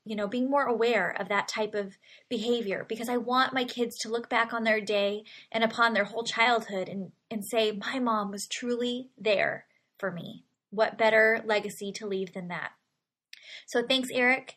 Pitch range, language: 220-255 Hz, English